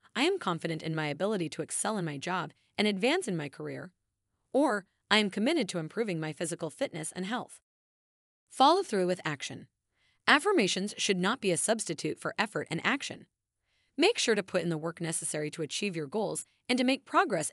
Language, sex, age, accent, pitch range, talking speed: English, female, 30-49, American, 165-245 Hz, 195 wpm